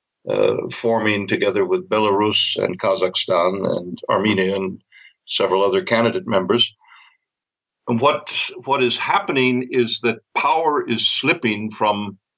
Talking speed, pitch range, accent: 120 wpm, 105-120 Hz, American